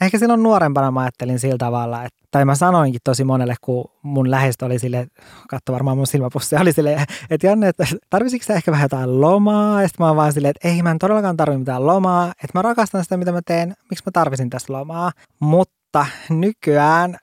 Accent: native